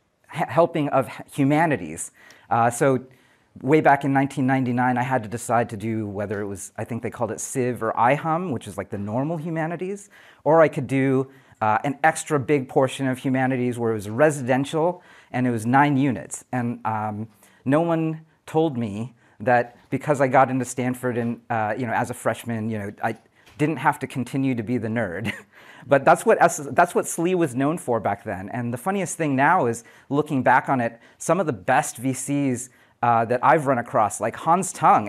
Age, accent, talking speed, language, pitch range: 40-59, American, 200 wpm, English, 115-140 Hz